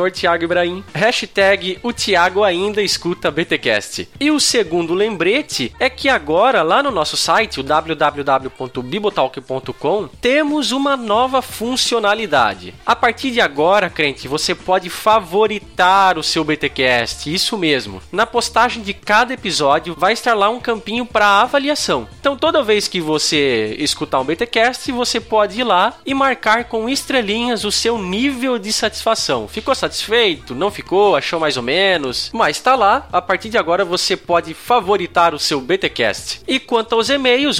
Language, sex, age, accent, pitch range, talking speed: Portuguese, male, 20-39, Brazilian, 170-235 Hz, 155 wpm